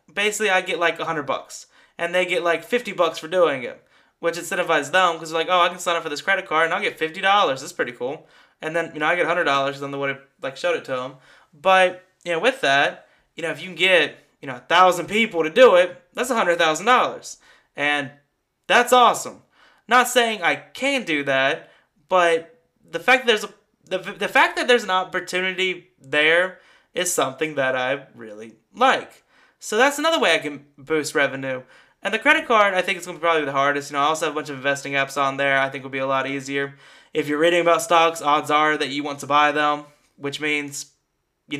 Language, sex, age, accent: English, male, 20-39, American